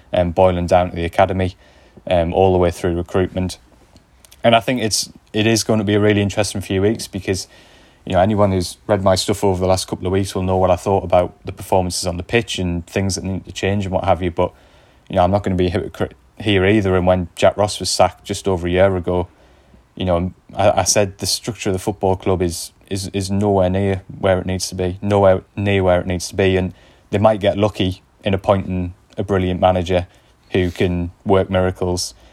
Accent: British